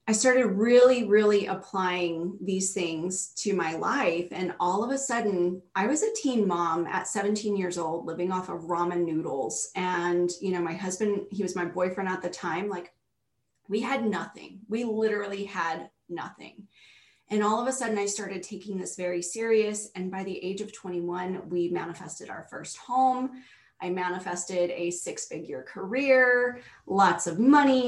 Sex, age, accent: female, 30-49, American